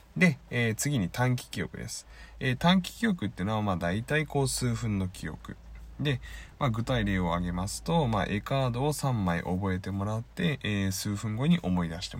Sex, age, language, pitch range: male, 20-39, Japanese, 90-130 Hz